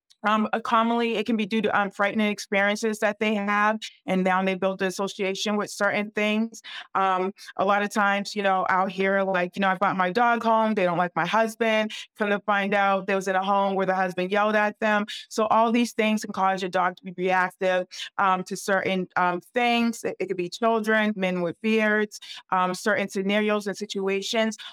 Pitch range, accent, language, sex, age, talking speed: 185-215 Hz, American, English, female, 30-49, 215 wpm